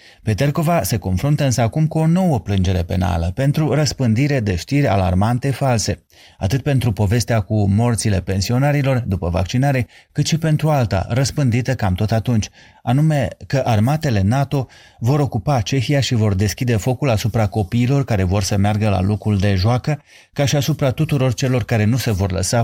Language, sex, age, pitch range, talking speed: Romanian, male, 30-49, 100-130 Hz, 165 wpm